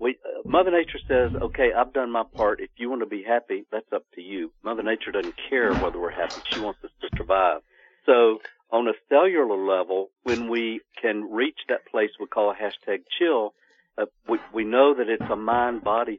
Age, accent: 50-69, American